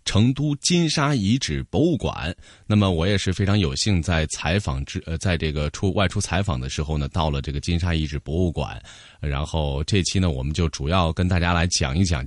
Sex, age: male, 20-39